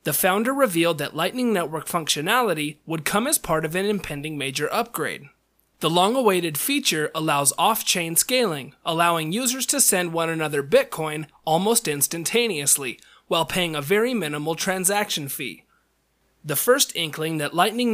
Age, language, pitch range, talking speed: 30-49, English, 155-210 Hz, 145 wpm